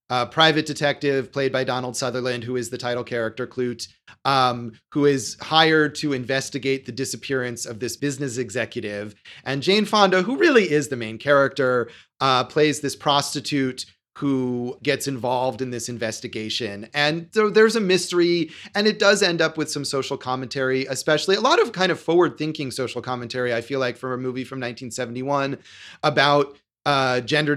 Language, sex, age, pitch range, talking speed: English, male, 30-49, 125-155 Hz, 170 wpm